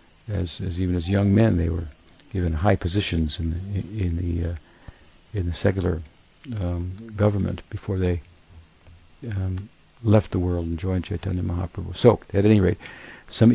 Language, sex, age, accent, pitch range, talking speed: English, male, 60-79, American, 90-110 Hz, 165 wpm